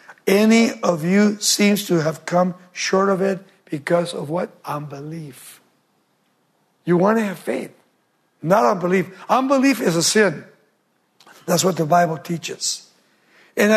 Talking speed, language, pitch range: 135 wpm, English, 170-230 Hz